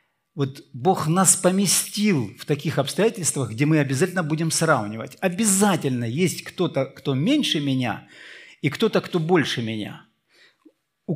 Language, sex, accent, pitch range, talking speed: Russian, male, native, 130-180 Hz, 130 wpm